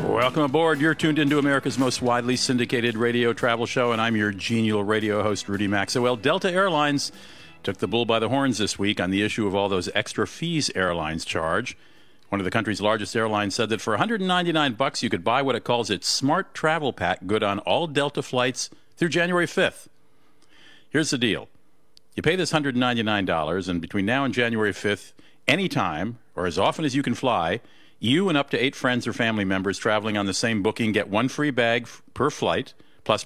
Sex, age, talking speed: male, 50-69, 200 wpm